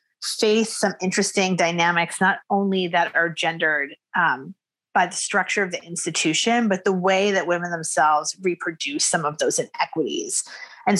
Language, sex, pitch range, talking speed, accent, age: English, female, 175-225 Hz, 155 wpm, American, 30-49